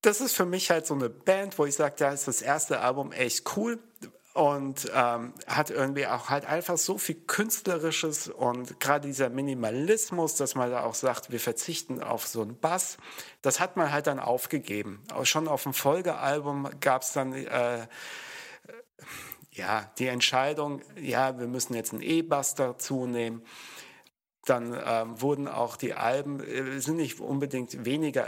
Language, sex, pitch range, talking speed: German, male, 120-140 Hz, 170 wpm